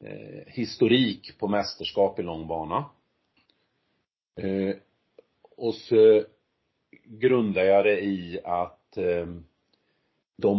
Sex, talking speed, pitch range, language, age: male, 75 wpm, 90-130 Hz, Swedish, 40-59